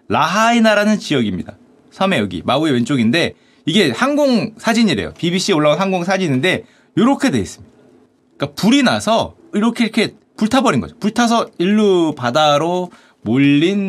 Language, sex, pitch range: Korean, male, 140-215 Hz